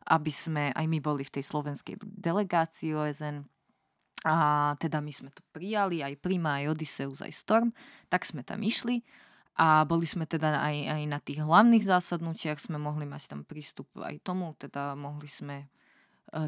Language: Slovak